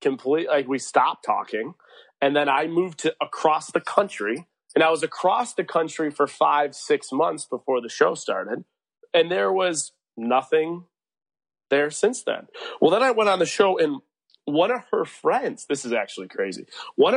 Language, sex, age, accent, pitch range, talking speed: English, male, 30-49, American, 145-220 Hz, 180 wpm